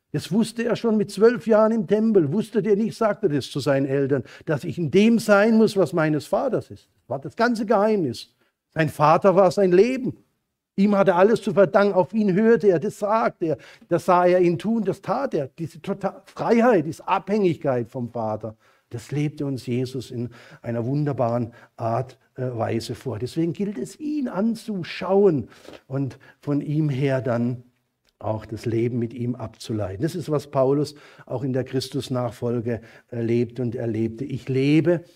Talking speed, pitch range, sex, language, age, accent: 175 wpm, 115-170 Hz, male, German, 50-69, German